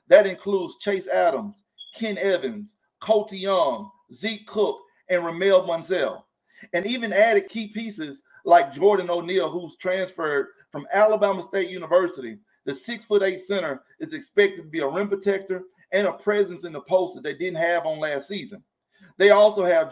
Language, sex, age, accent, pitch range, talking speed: English, male, 40-59, American, 175-215 Hz, 165 wpm